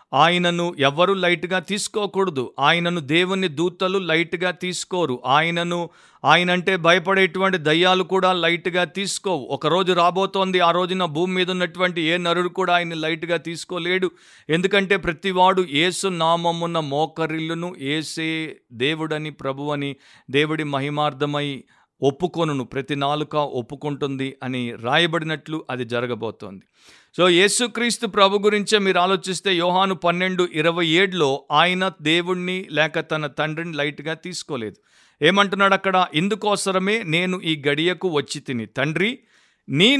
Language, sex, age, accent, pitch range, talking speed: Telugu, male, 50-69, native, 150-185 Hz, 110 wpm